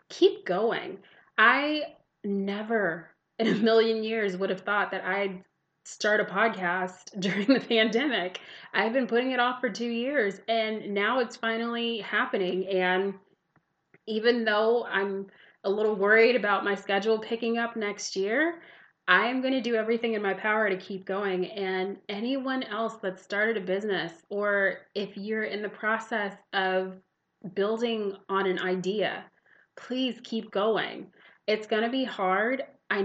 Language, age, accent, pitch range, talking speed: English, 20-39, American, 190-230 Hz, 155 wpm